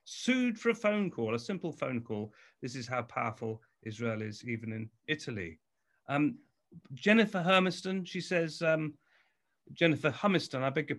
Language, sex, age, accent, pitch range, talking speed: English, male, 40-59, British, 130-180 Hz, 160 wpm